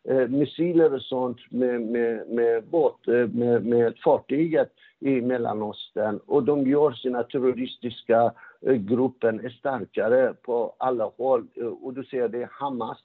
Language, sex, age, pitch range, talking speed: Swedish, male, 60-79, 120-155 Hz, 125 wpm